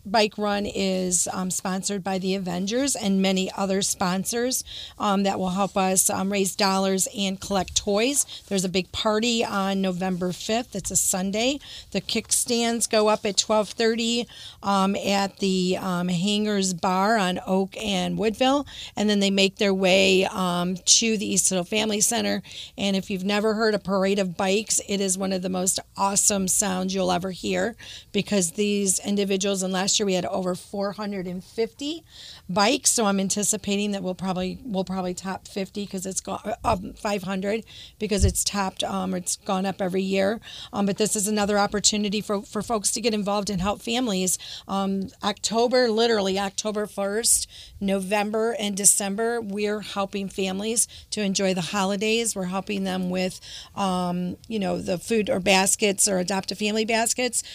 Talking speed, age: 170 wpm, 40-59